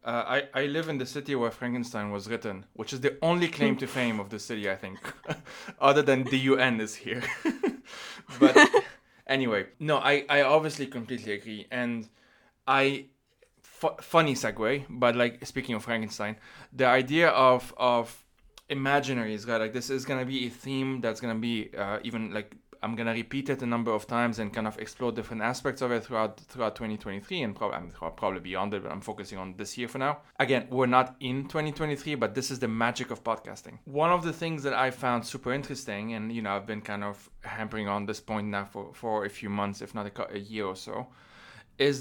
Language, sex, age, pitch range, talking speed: English, male, 20-39, 110-135 Hz, 210 wpm